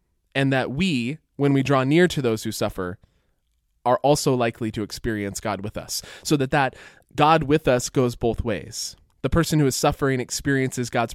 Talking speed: 190 wpm